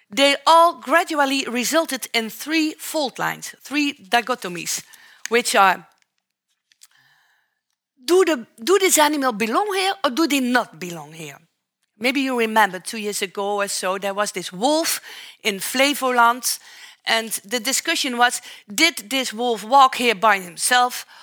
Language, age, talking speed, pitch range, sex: Dutch, 50-69, 140 wpm, 200-285 Hz, female